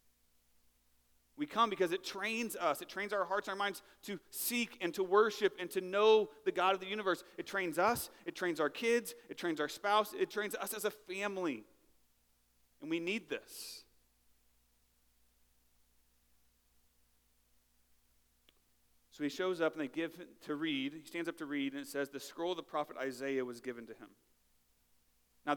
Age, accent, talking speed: 40-59, American, 175 wpm